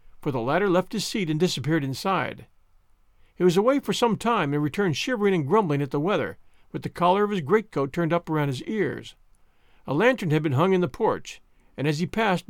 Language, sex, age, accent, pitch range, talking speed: English, male, 50-69, American, 145-205 Hz, 220 wpm